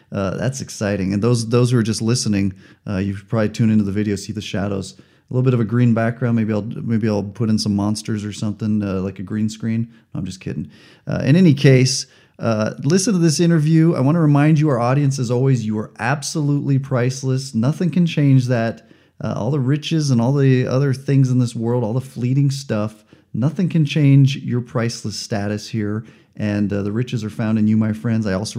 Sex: male